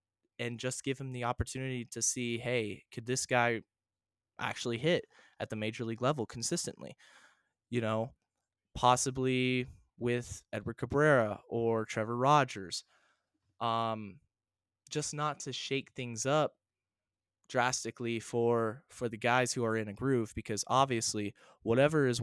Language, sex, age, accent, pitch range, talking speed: English, male, 20-39, American, 110-140 Hz, 135 wpm